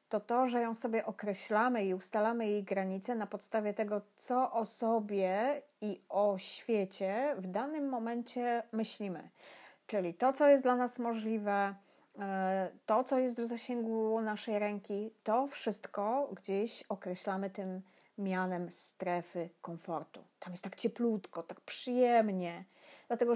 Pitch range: 185-235 Hz